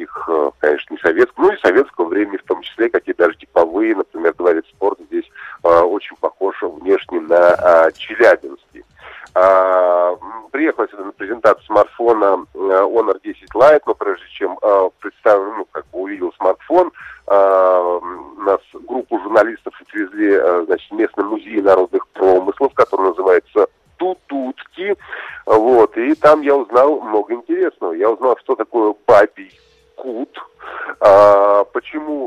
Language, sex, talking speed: Russian, male, 130 wpm